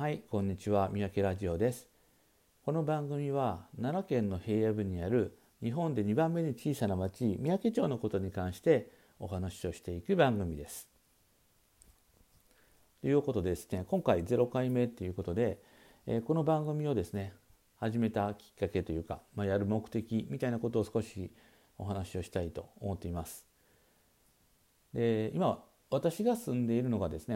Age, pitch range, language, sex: 50-69, 95-125 Hz, Japanese, male